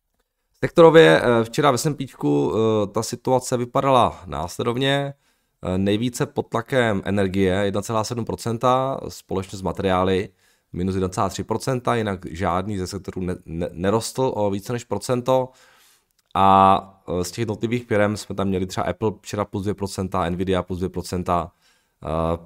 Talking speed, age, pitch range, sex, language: 110 wpm, 20-39, 90-110 Hz, male, Czech